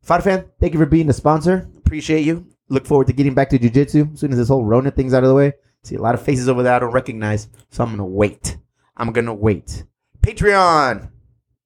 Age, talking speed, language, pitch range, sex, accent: 30-49, 240 wpm, English, 115-145 Hz, male, American